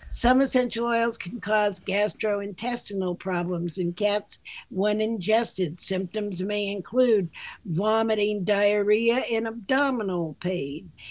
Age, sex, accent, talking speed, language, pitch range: 60-79, female, American, 105 wpm, English, 195-250 Hz